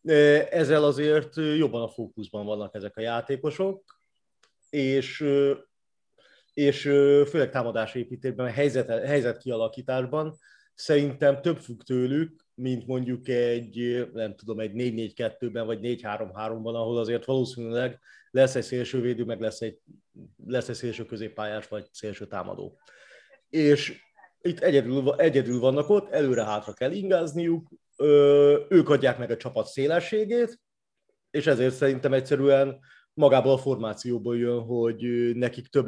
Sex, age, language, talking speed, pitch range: male, 30-49, Hungarian, 120 wpm, 115-145 Hz